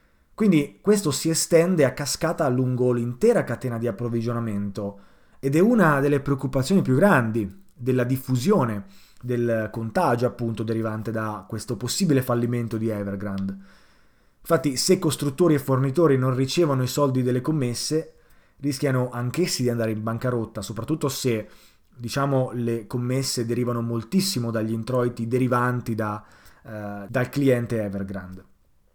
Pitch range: 115-145 Hz